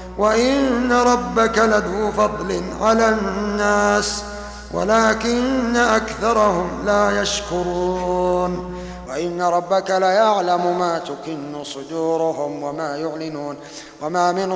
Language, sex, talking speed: Arabic, male, 80 wpm